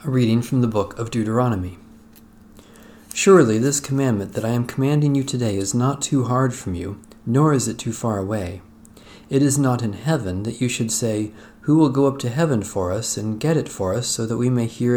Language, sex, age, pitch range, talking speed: English, male, 40-59, 110-135 Hz, 220 wpm